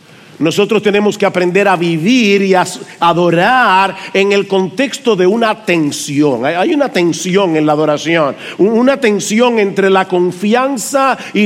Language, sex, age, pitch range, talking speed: English, male, 50-69, 185-245 Hz, 140 wpm